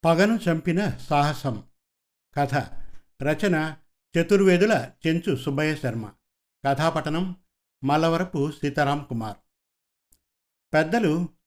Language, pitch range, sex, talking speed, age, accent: Telugu, 135-170 Hz, male, 70 wpm, 50-69, native